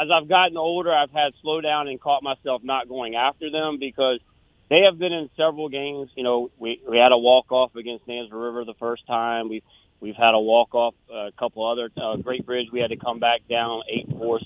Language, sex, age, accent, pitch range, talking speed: English, male, 30-49, American, 115-140 Hz, 215 wpm